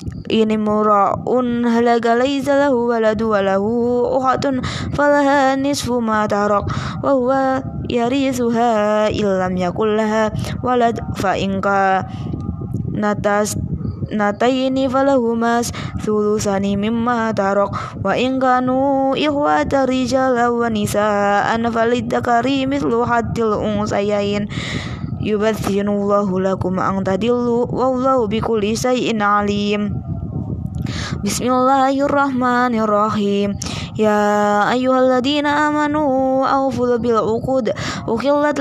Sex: female